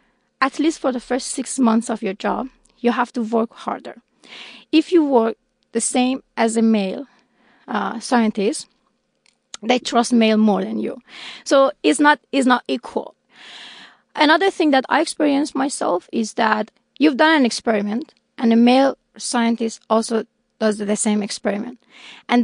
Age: 30-49